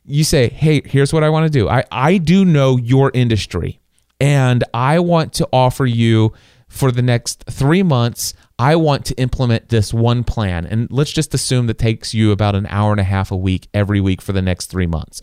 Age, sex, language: 30-49, male, English